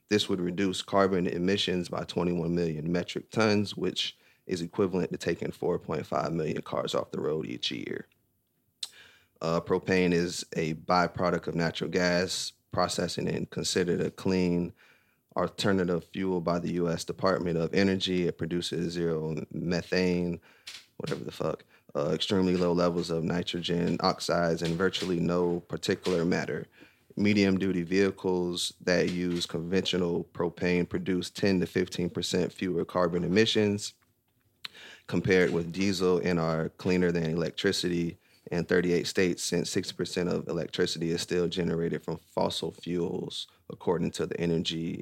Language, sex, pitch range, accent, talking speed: English, male, 85-95 Hz, American, 135 wpm